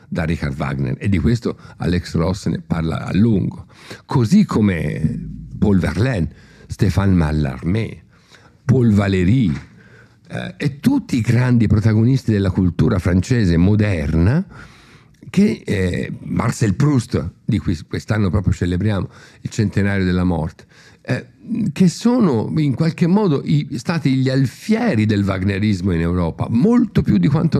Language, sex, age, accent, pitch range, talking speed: Italian, male, 50-69, native, 95-140 Hz, 130 wpm